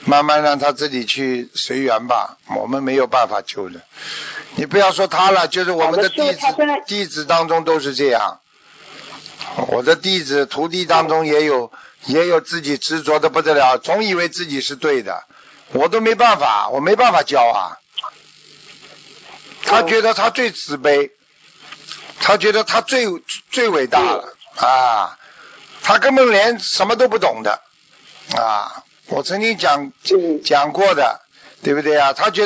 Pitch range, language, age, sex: 145-195 Hz, Chinese, 50-69, male